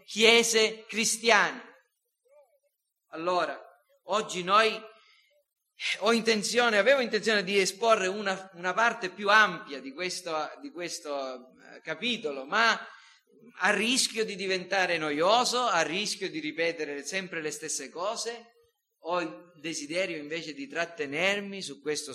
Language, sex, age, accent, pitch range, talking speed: Italian, male, 40-59, native, 165-235 Hz, 115 wpm